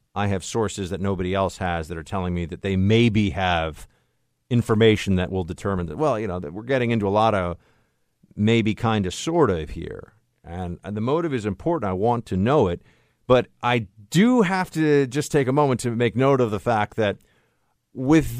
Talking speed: 205 wpm